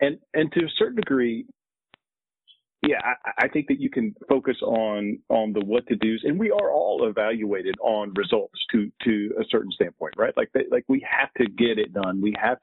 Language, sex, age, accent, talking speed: English, male, 40-59, American, 210 wpm